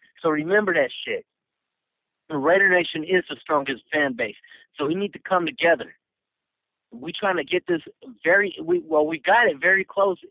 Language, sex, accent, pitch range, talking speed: English, male, American, 165-205 Hz, 175 wpm